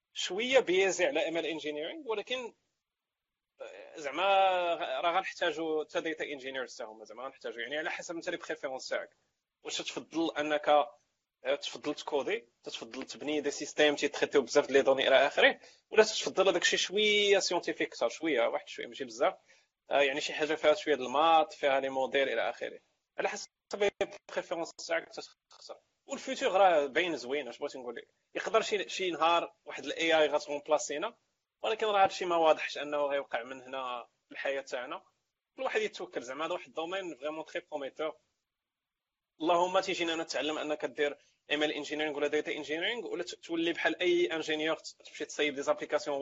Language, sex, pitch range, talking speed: Arabic, male, 145-185 Hz, 160 wpm